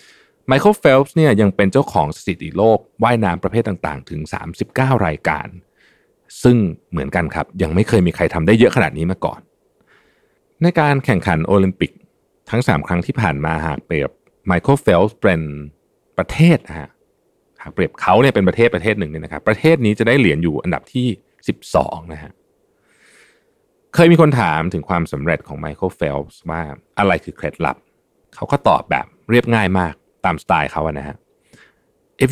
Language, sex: Thai, male